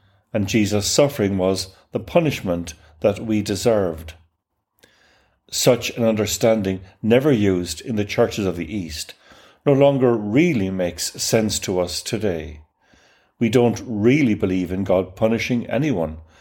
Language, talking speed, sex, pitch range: English, 130 wpm, male, 90-120 Hz